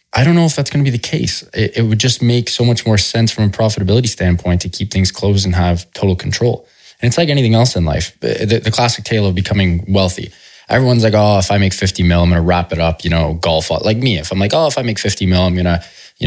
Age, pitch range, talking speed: 20-39, 90-115 Hz, 285 wpm